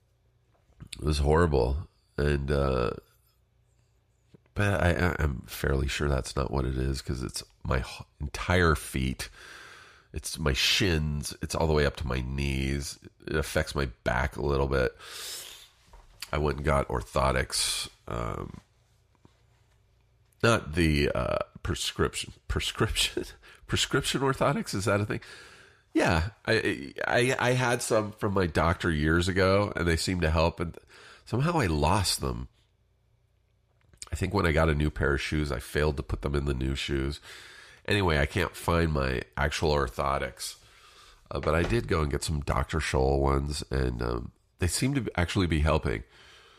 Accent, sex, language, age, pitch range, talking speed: American, male, English, 40-59, 70-100 Hz, 155 wpm